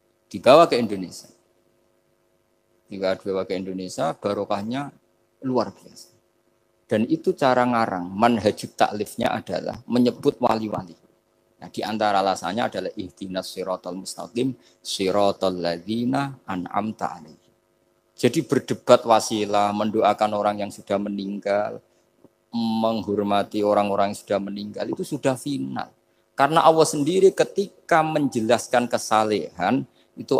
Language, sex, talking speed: Indonesian, male, 95 wpm